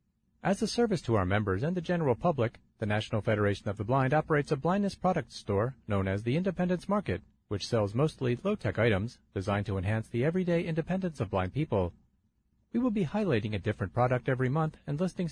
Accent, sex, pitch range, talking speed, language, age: American, male, 105-160 Hz, 200 wpm, English, 40-59